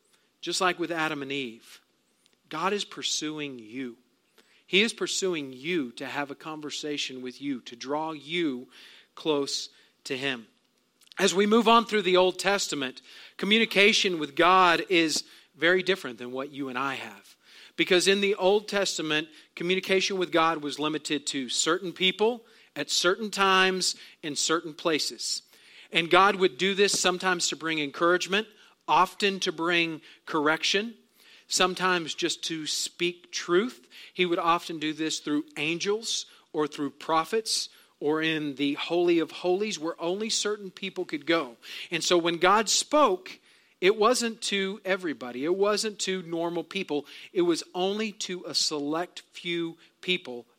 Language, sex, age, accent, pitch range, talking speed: English, male, 40-59, American, 150-195 Hz, 150 wpm